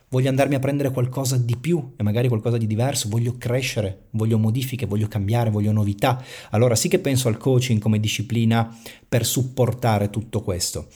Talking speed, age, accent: 175 wpm, 40-59, native